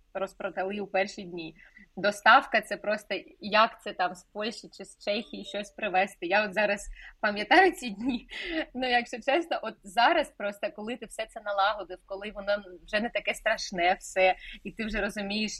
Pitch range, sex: 195-235 Hz, female